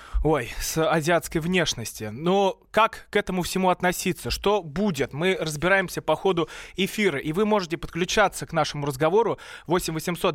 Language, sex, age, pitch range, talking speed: Russian, male, 20-39, 155-190 Hz, 150 wpm